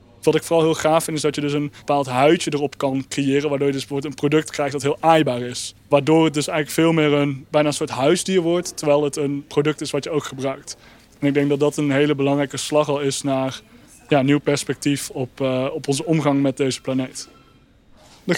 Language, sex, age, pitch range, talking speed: Dutch, male, 20-39, 145-165 Hz, 235 wpm